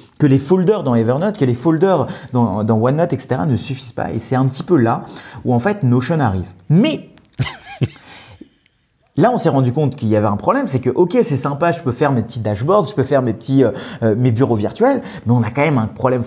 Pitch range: 125-175 Hz